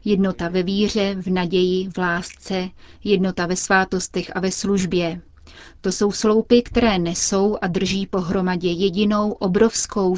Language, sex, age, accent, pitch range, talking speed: Czech, female, 30-49, native, 175-200 Hz, 135 wpm